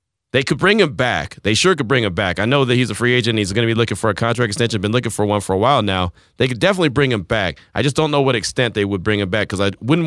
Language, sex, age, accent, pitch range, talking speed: English, male, 30-49, American, 95-120 Hz, 335 wpm